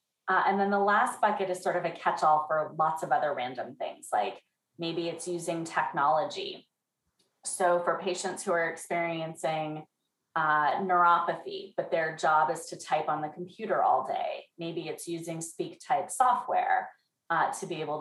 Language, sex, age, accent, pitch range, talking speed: English, female, 30-49, American, 160-200 Hz, 170 wpm